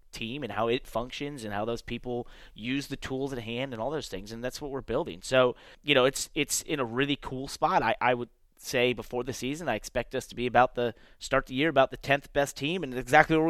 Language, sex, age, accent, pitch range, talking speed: English, male, 30-49, American, 110-130 Hz, 260 wpm